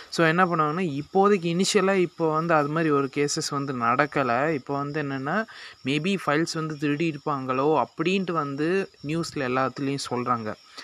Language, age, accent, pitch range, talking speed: Tamil, 30-49, native, 130-165 Hz, 140 wpm